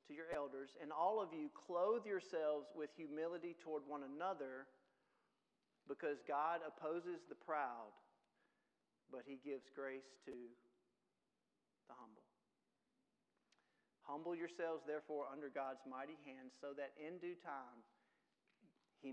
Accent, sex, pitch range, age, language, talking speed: American, male, 130-165 Hz, 40-59, English, 120 wpm